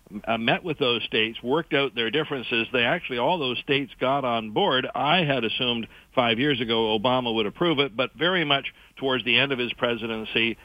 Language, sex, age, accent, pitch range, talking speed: English, male, 60-79, American, 115-135 Hz, 205 wpm